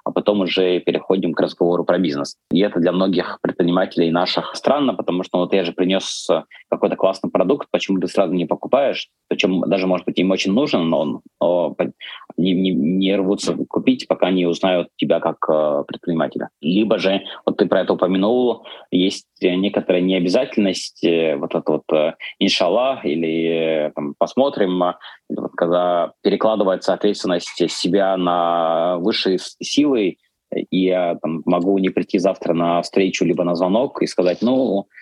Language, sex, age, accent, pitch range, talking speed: Russian, male, 20-39, native, 85-95 Hz, 155 wpm